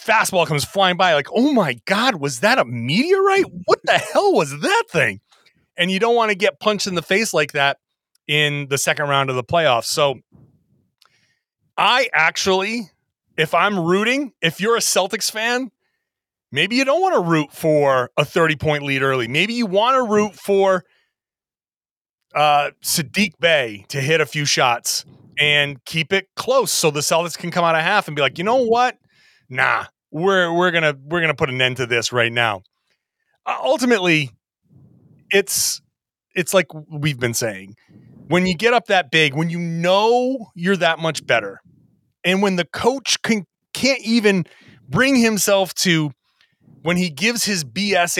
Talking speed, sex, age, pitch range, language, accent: 175 wpm, male, 30-49, 145-205 Hz, English, American